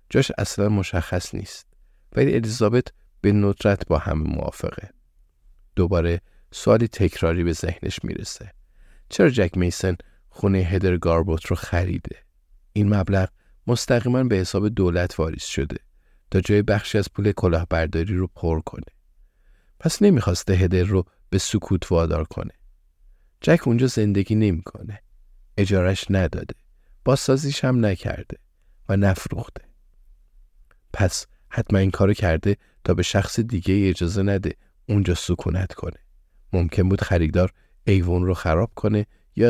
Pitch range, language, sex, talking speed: 85-100 Hz, Persian, male, 125 wpm